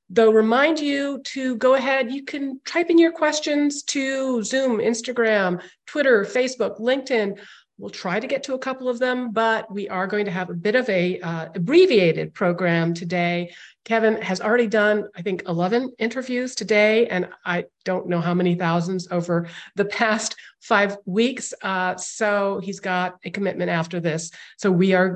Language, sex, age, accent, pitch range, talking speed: English, female, 40-59, American, 180-240 Hz, 175 wpm